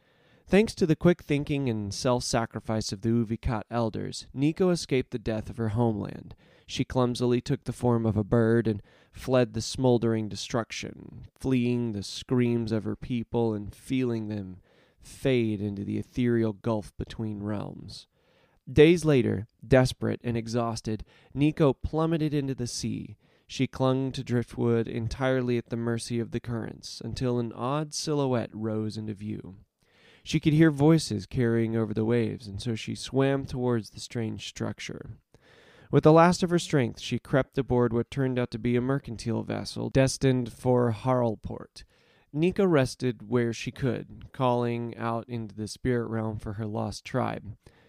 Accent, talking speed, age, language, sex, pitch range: American, 160 wpm, 20-39, English, male, 110-130 Hz